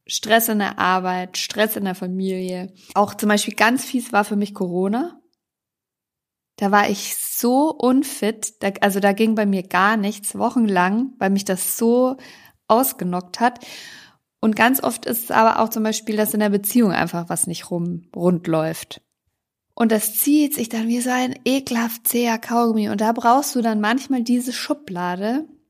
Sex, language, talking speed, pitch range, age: female, German, 175 wpm, 195-235 Hz, 50-69